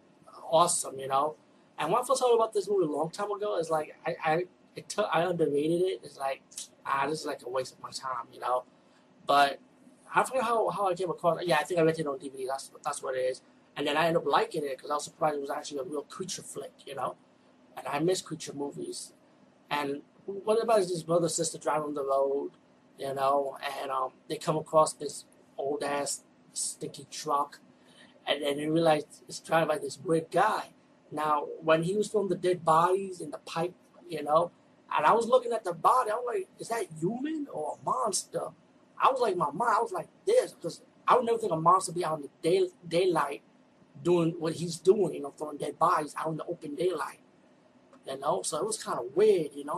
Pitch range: 150-195 Hz